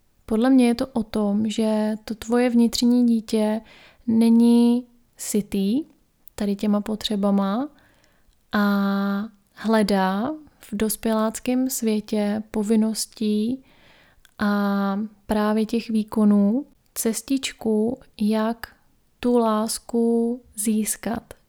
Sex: female